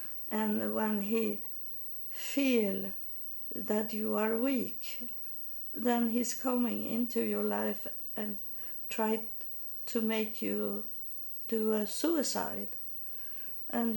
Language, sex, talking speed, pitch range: English, female, 100 wpm, 205-245 Hz